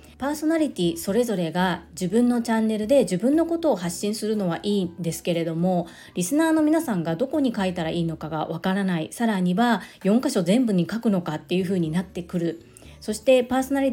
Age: 40-59